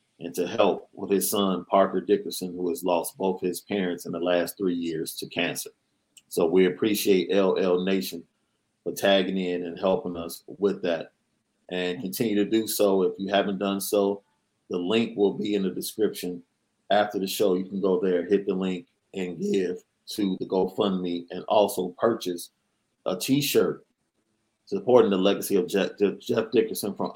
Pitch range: 95-115 Hz